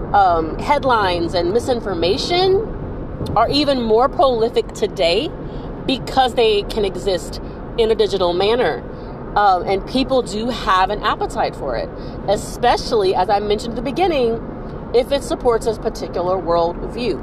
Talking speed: 135 wpm